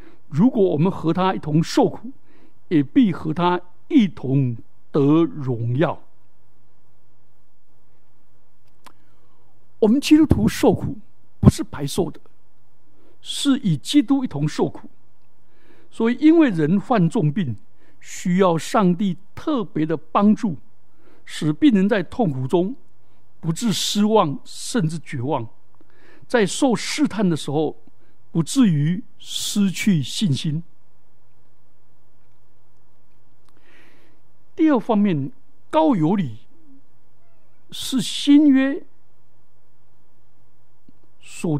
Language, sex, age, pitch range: Chinese, male, 60-79, 140-225 Hz